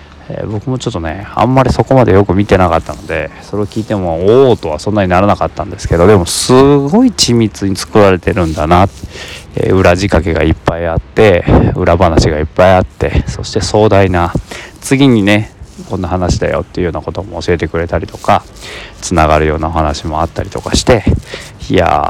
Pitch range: 85-105 Hz